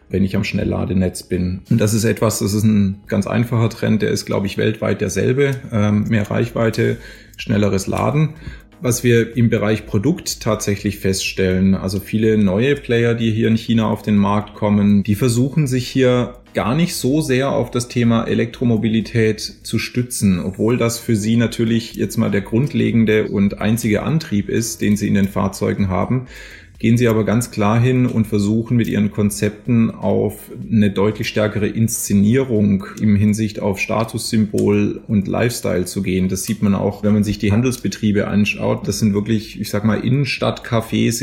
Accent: German